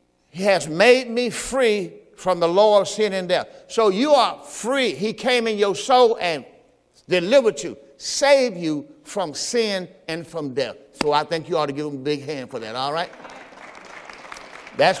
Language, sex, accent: English, male, American